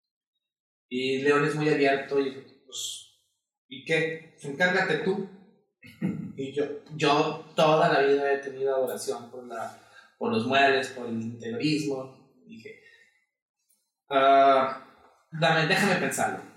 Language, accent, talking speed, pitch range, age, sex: Spanish, Mexican, 125 wpm, 130-175 Hz, 30-49, male